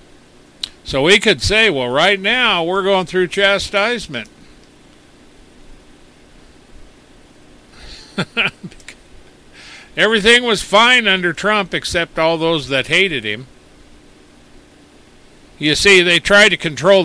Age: 60-79